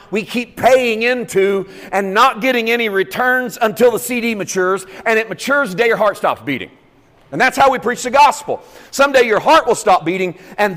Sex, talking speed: male, 200 wpm